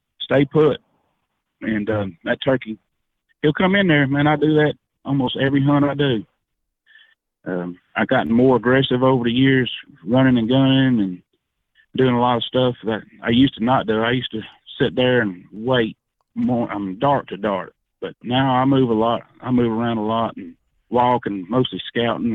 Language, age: English, 30-49